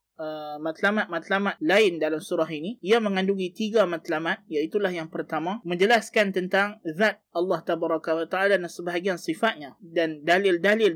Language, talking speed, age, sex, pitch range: Malay, 130 wpm, 20-39, male, 165-195 Hz